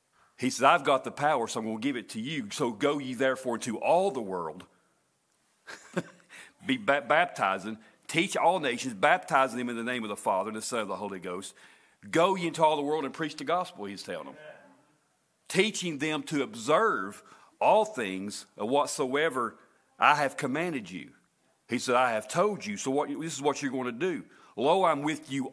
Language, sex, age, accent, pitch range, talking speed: English, male, 40-59, American, 130-175 Hz, 195 wpm